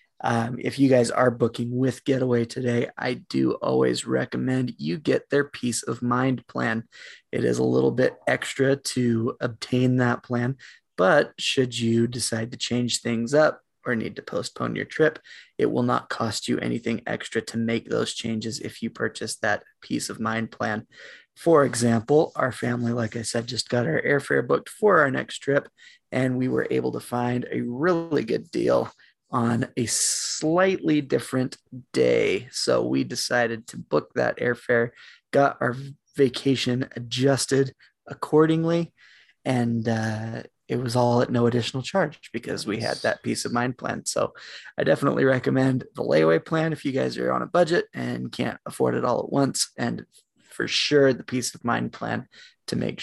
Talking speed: 175 wpm